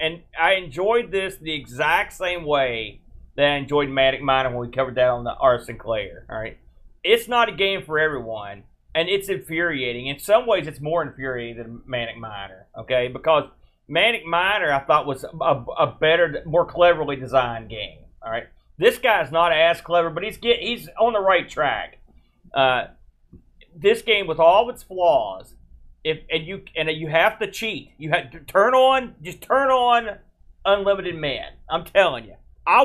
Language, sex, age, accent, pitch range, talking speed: English, male, 30-49, American, 135-195 Hz, 185 wpm